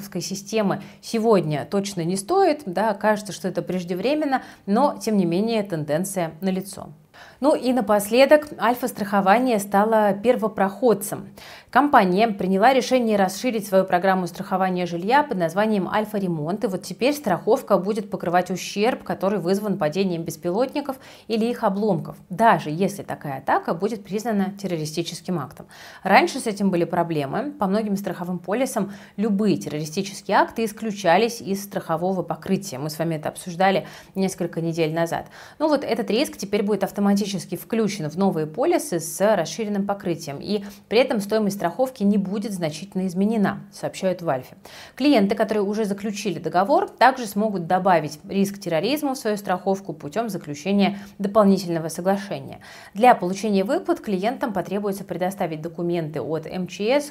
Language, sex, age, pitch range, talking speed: Russian, female, 30-49, 180-220 Hz, 140 wpm